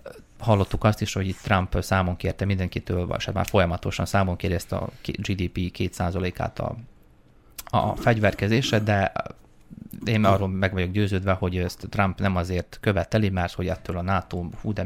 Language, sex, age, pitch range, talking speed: Hungarian, male, 30-49, 90-110 Hz, 160 wpm